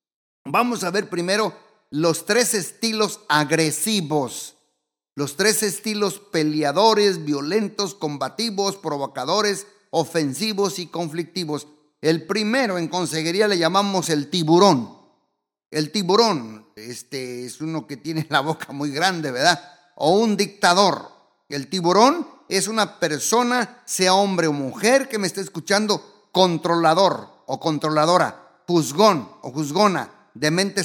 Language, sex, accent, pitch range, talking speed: Spanish, male, Mexican, 160-215 Hz, 120 wpm